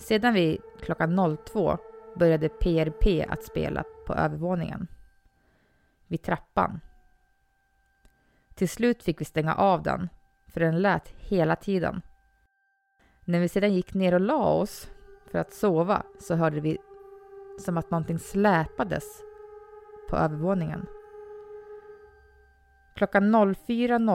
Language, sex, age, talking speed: Swedish, female, 20-39, 110 wpm